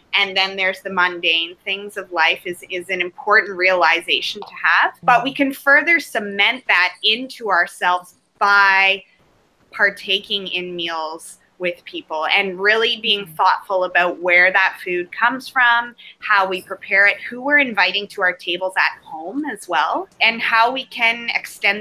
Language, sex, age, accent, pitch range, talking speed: English, female, 20-39, American, 185-235 Hz, 160 wpm